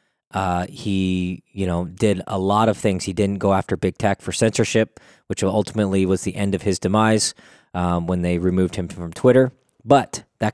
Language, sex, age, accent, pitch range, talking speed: English, male, 20-39, American, 95-110 Hz, 195 wpm